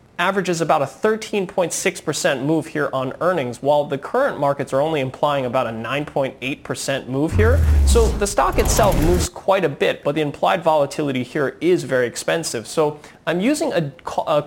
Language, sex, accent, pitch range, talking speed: English, male, American, 130-165 Hz, 170 wpm